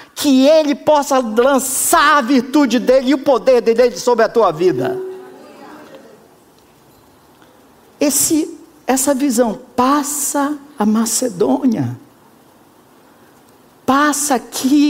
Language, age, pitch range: Portuguese, 50-69, 210-310 Hz